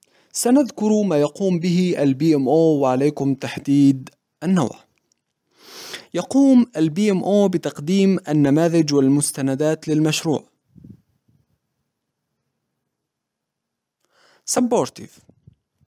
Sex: male